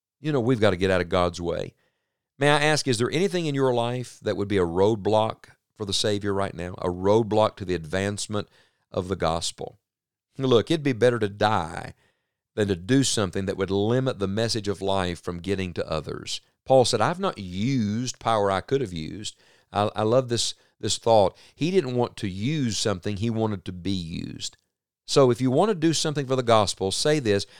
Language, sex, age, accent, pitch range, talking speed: English, male, 40-59, American, 100-130 Hz, 210 wpm